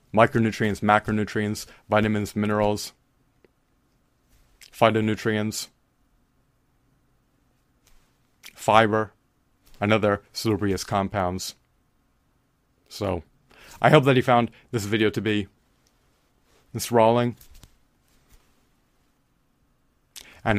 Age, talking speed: 30-49, 65 wpm